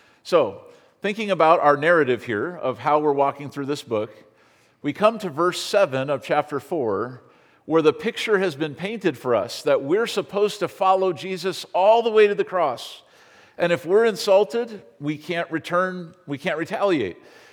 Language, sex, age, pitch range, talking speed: English, male, 50-69, 140-190 Hz, 175 wpm